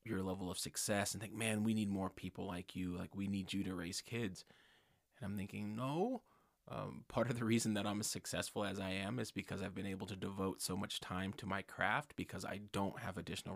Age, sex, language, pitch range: 30-49, male, English, 95-105 Hz